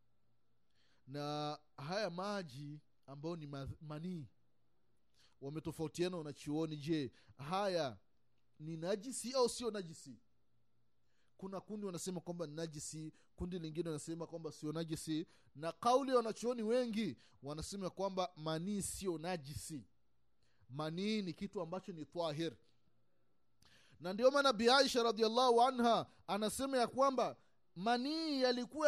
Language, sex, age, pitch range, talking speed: Swahili, male, 30-49, 150-235 Hz, 110 wpm